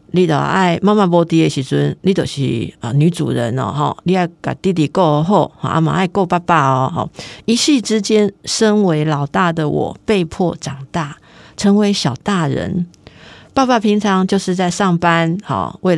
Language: Chinese